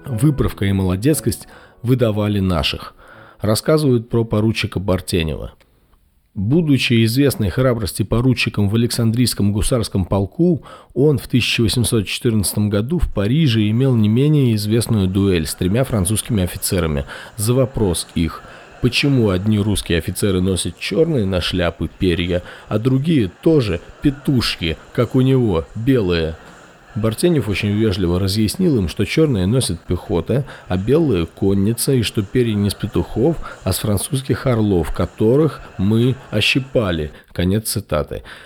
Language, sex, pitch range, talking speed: Russian, male, 95-125 Hz, 125 wpm